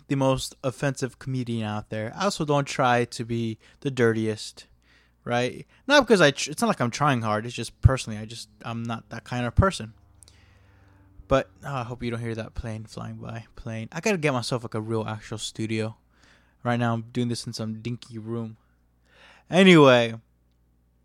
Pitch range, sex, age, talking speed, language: 115-160 Hz, male, 20-39, 190 wpm, English